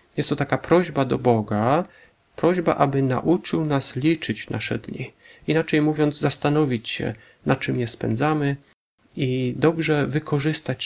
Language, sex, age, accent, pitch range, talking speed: Polish, male, 40-59, native, 120-155 Hz, 135 wpm